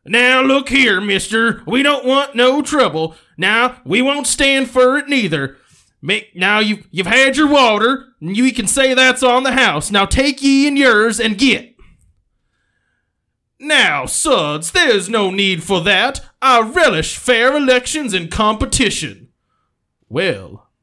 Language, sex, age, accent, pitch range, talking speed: English, male, 20-39, American, 175-270 Hz, 150 wpm